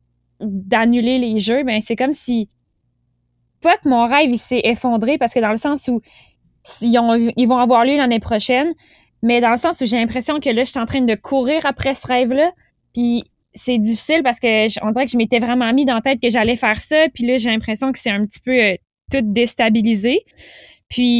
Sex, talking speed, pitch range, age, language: female, 220 wpm, 230-275 Hz, 10-29, French